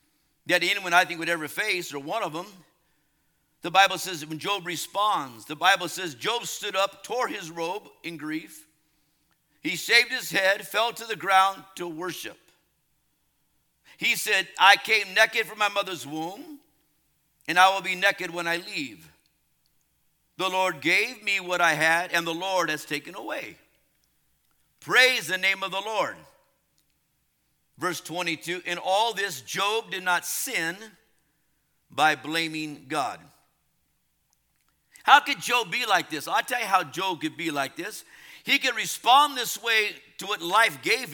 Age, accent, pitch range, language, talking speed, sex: 50-69, American, 155-205 Hz, English, 160 wpm, male